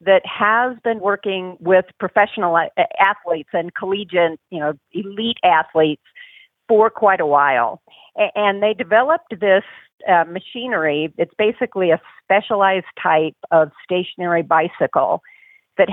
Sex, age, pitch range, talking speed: female, 50-69, 185-240 Hz, 120 wpm